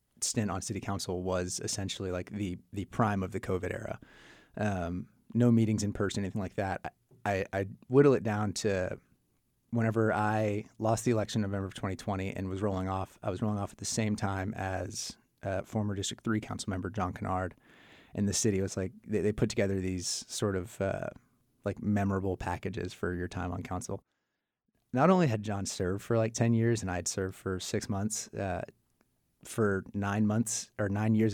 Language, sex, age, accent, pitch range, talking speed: English, male, 30-49, American, 95-110 Hz, 195 wpm